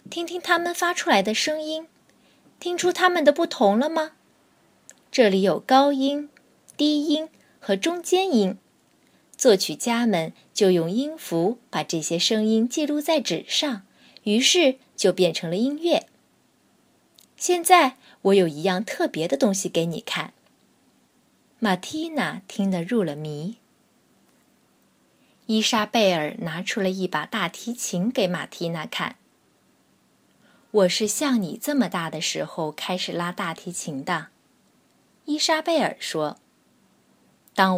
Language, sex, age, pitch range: Chinese, female, 20-39, 180-295 Hz